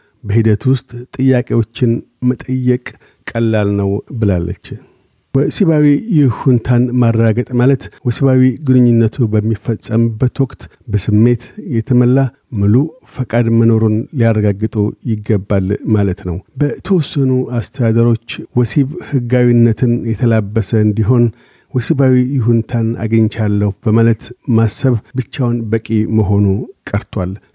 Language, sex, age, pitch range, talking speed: Amharic, male, 50-69, 110-125 Hz, 85 wpm